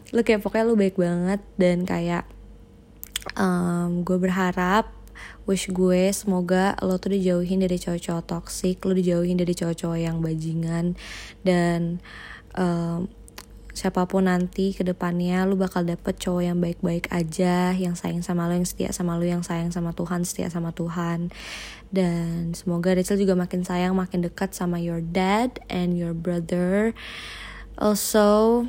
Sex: female